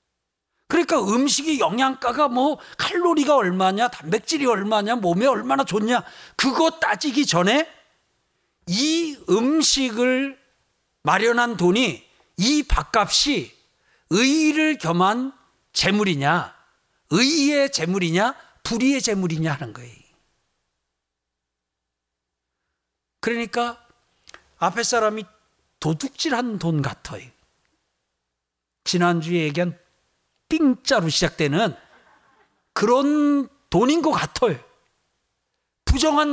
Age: 50-69